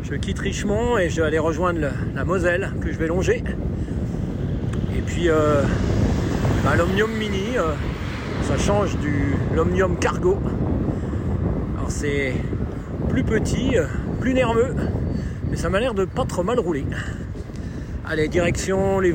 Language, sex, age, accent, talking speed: French, male, 40-59, French, 140 wpm